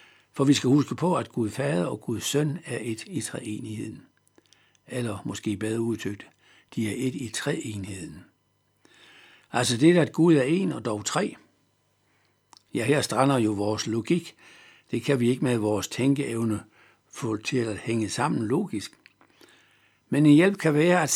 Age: 60-79